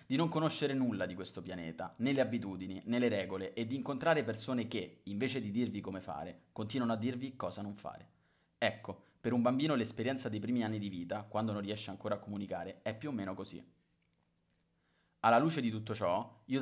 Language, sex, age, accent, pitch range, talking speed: Italian, male, 30-49, native, 100-125 Hz, 200 wpm